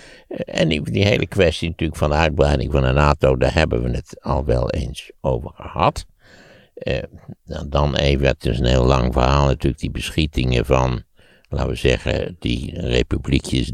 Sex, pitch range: male, 65-85 Hz